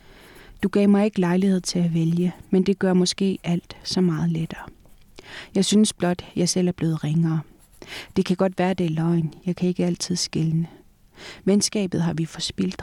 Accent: native